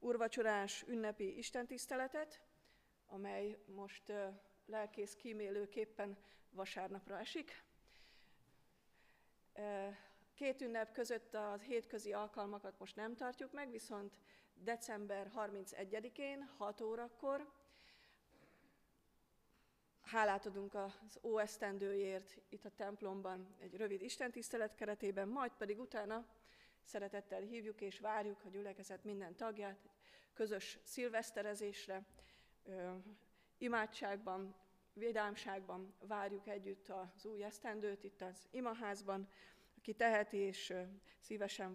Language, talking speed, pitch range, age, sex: Hungarian, 90 wpm, 195-220 Hz, 30-49, female